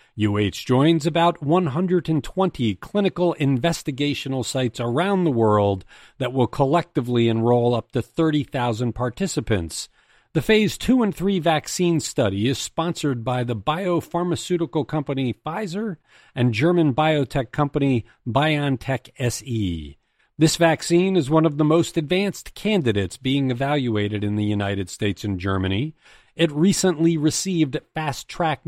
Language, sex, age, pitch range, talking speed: English, male, 40-59, 115-165 Hz, 125 wpm